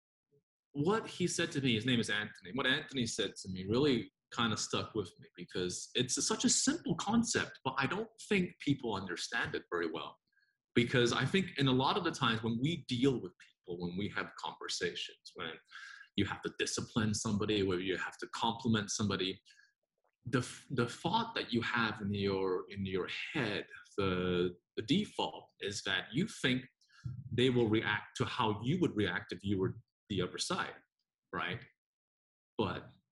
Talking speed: 180 wpm